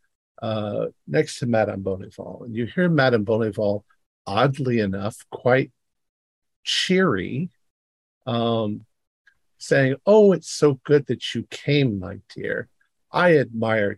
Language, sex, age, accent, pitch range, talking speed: English, male, 50-69, American, 105-130 Hz, 115 wpm